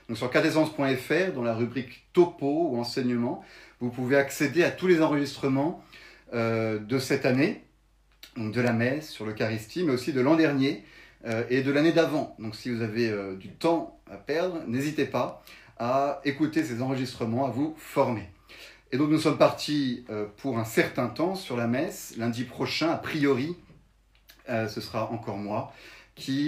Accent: French